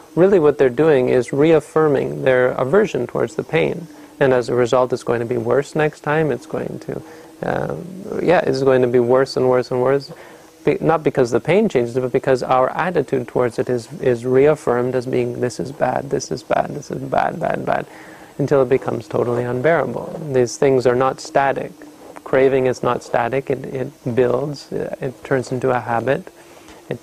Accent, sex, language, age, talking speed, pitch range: American, male, English, 30-49, 195 wpm, 125-145 Hz